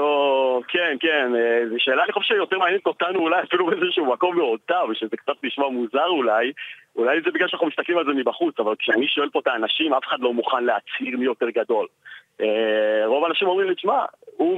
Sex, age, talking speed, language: male, 40-59, 195 wpm, Hebrew